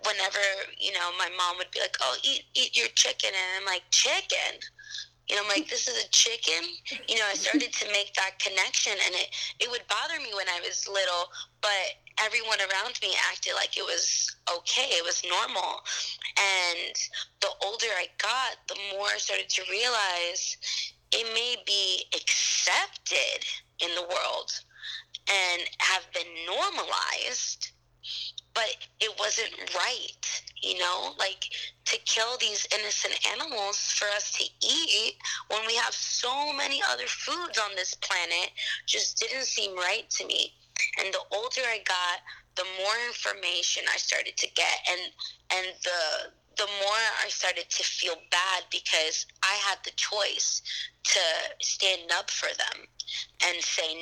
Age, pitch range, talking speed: 20-39, 185-300 Hz, 160 wpm